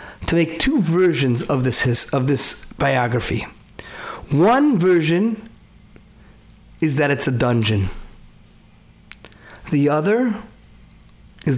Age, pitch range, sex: 40-59, 125-185 Hz, male